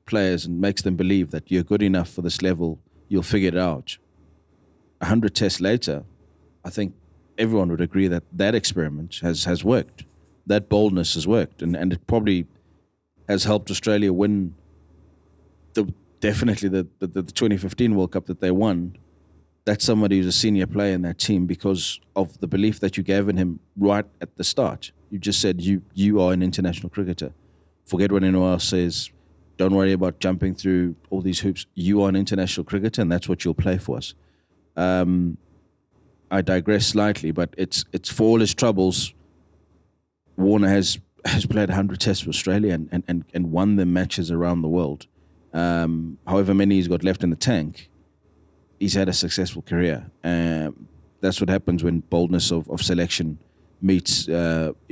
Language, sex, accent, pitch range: English, male, South African, 85-100 Hz